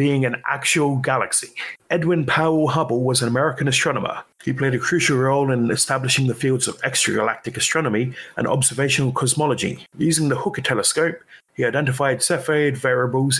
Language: English